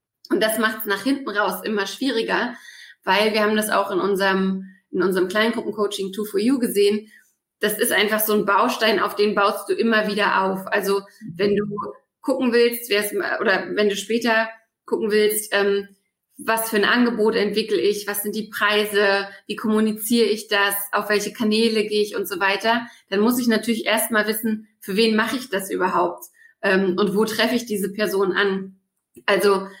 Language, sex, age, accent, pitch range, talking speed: German, female, 20-39, German, 200-230 Hz, 185 wpm